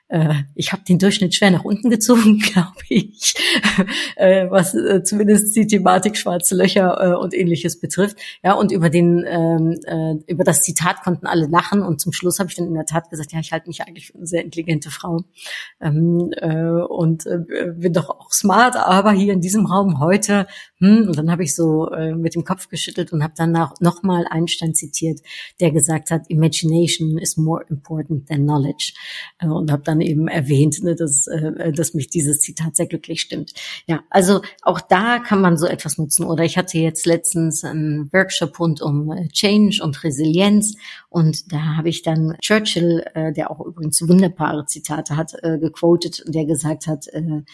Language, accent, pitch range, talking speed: German, German, 160-185 Hz, 175 wpm